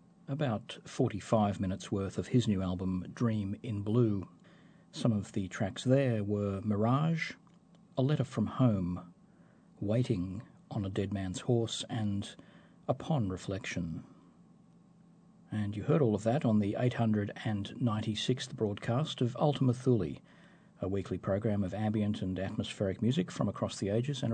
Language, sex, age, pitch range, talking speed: English, male, 40-59, 95-130 Hz, 140 wpm